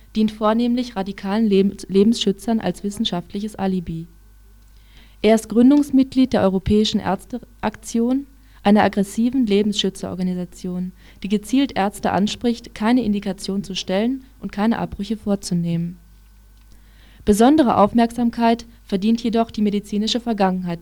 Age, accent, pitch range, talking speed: 20-39, German, 180-230 Hz, 100 wpm